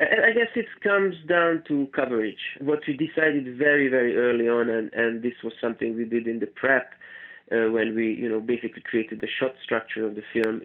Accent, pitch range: Italian, 115-135 Hz